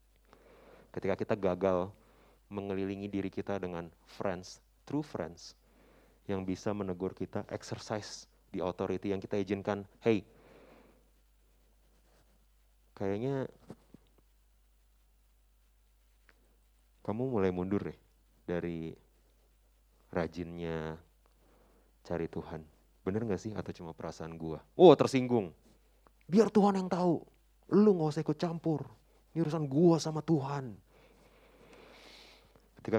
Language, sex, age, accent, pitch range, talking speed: Indonesian, male, 30-49, native, 90-120 Hz, 100 wpm